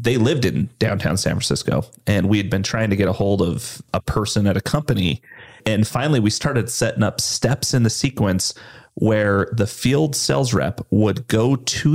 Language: English